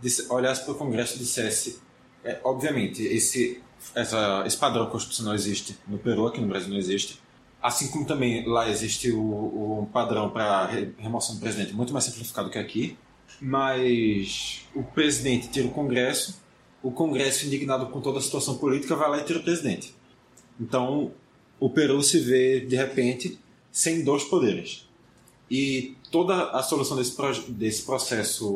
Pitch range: 115-145 Hz